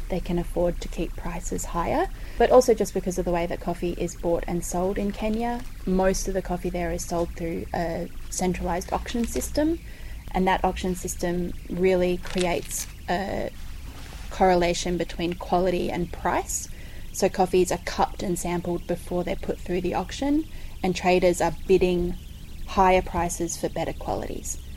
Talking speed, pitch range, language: 160 wpm, 170-195 Hz, English